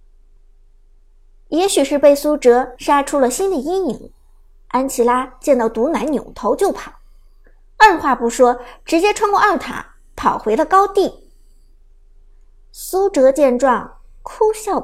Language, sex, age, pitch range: Chinese, male, 50-69, 235-360 Hz